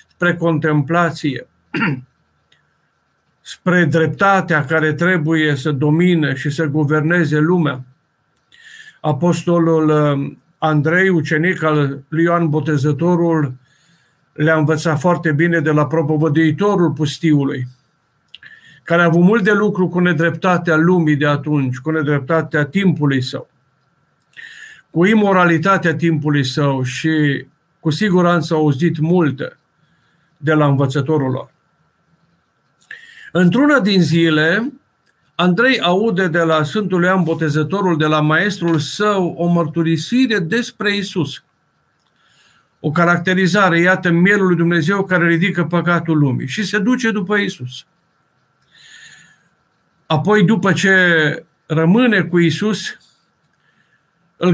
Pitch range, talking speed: 155-185 Hz, 105 wpm